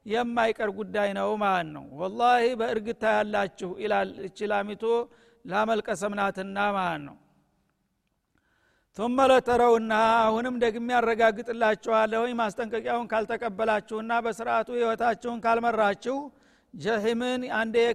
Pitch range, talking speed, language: 215-235 Hz, 80 wpm, Amharic